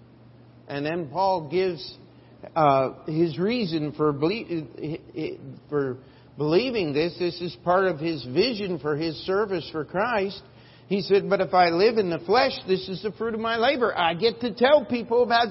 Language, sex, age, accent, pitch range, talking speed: English, male, 50-69, American, 125-200 Hz, 175 wpm